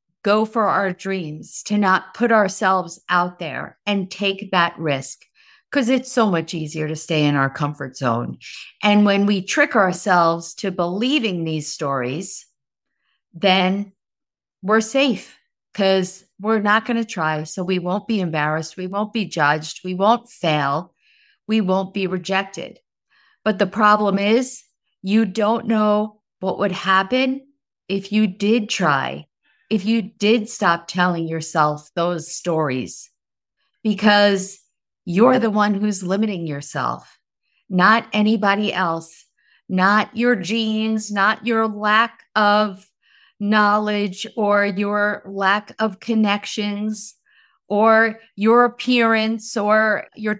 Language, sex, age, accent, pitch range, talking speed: English, female, 50-69, American, 185-225 Hz, 130 wpm